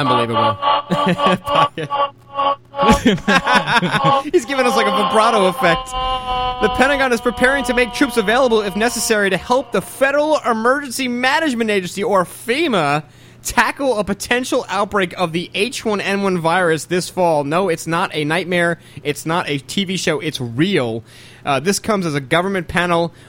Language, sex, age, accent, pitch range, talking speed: English, male, 30-49, American, 170-250 Hz, 145 wpm